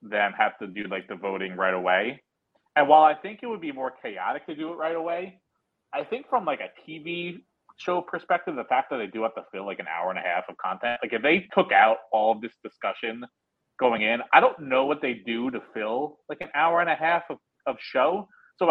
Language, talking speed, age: English, 245 wpm, 30-49